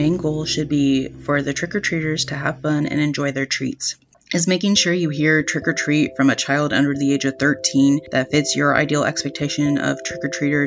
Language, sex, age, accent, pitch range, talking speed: English, female, 30-49, American, 140-155 Hz, 195 wpm